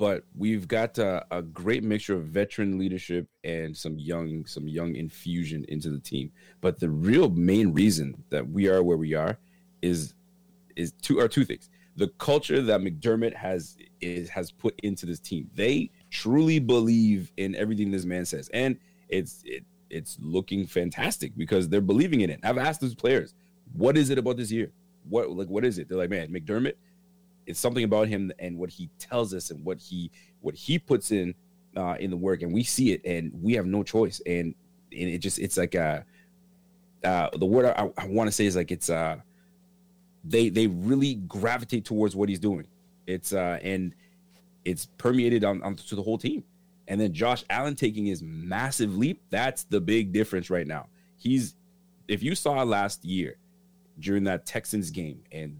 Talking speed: 190 wpm